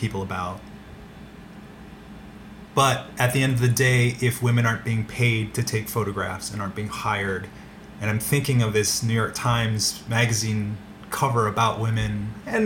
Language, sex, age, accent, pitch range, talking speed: English, male, 30-49, American, 105-135 Hz, 160 wpm